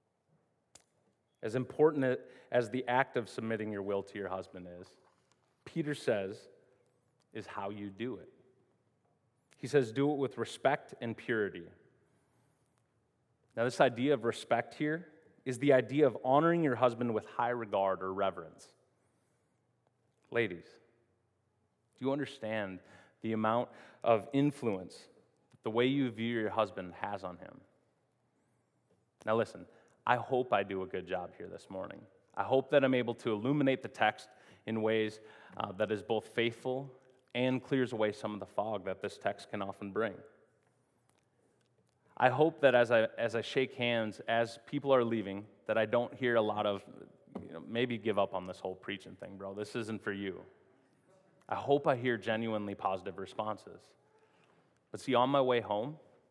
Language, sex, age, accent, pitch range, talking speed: English, male, 30-49, American, 105-130 Hz, 165 wpm